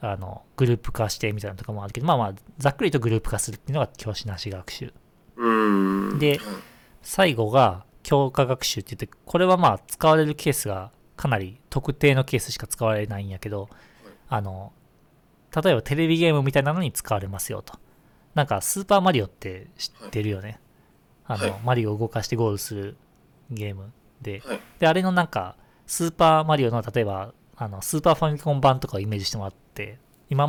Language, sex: Japanese, male